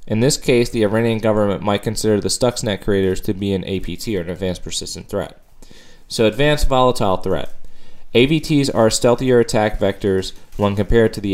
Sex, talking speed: male, 175 wpm